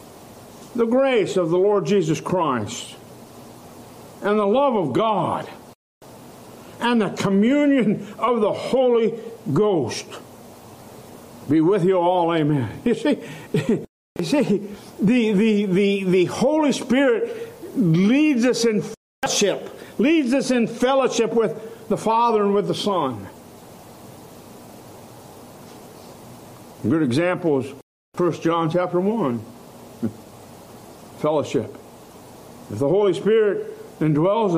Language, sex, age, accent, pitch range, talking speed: English, male, 60-79, American, 165-230 Hz, 110 wpm